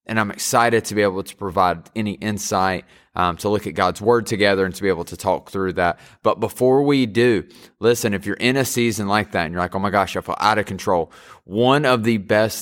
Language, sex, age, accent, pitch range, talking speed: English, male, 30-49, American, 95-115 Hz, 245 wpm